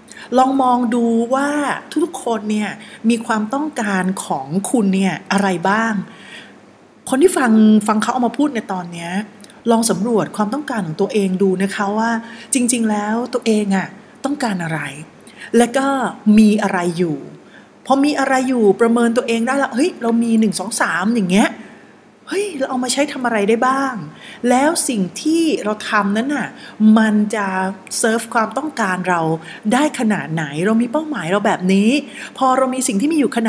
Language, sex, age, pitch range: Thai, female, 30-49, 190-250 Hz